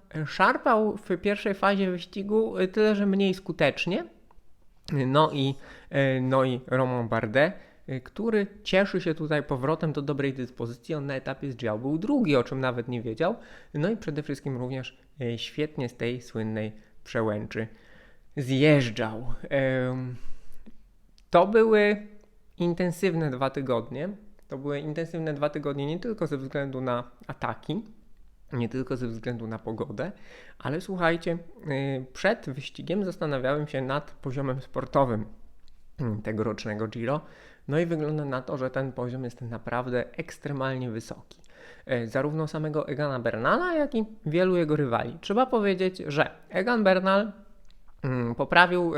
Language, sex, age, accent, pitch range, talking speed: Polish, male, 20-39, native, 125-180 Hz, 130 wpm